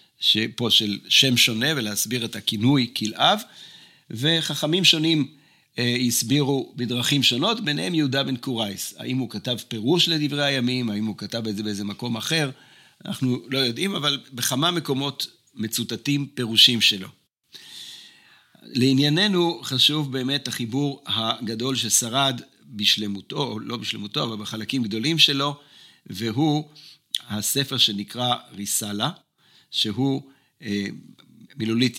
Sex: male